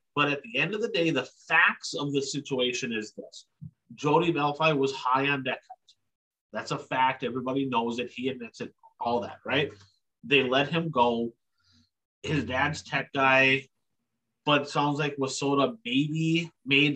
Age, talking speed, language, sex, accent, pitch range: 30-49, 165 wpm, English, male, American, 125-160 Hz